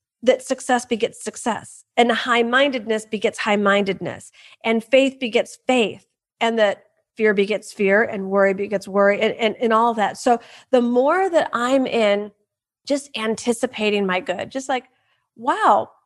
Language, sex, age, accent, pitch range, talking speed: English, female, 40-59, American, 225-305 Hz, 145 wpm